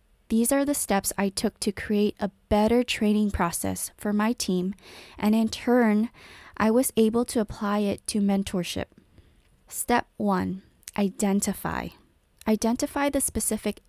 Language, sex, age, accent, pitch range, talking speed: English, female, 20-39, American, 200-240 Hz, 140 wpm